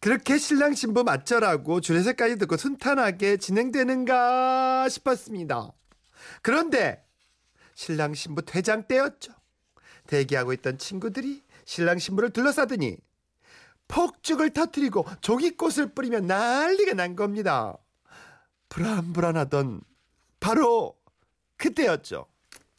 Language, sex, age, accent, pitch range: Korean, male, 40-59, native, 205-290 Hz